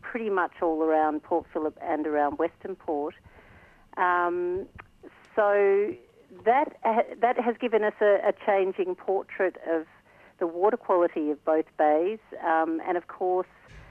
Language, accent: English, Australian